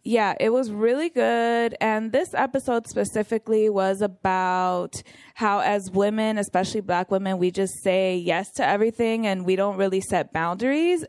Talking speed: 155 wpm